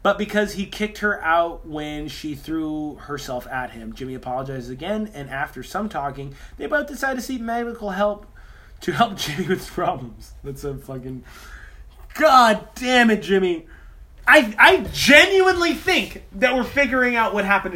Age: 20-39